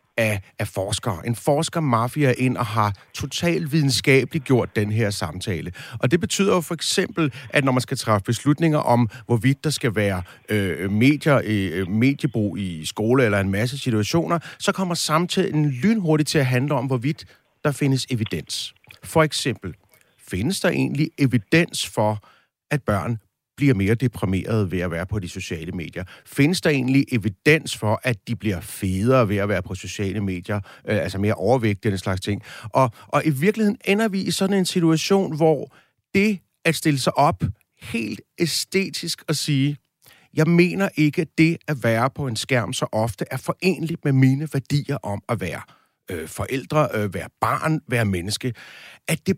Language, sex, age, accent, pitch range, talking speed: Danish, male, 30-49, native, 110-155 Hz, 175 wpm